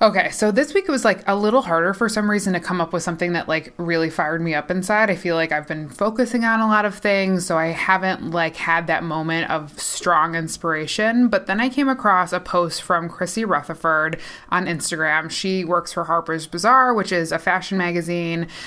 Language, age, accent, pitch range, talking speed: English, 20-39, American, 165-200 Hz, 220 wpm